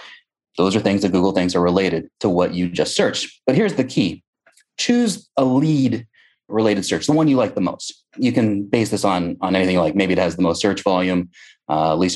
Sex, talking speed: male, 220 wpm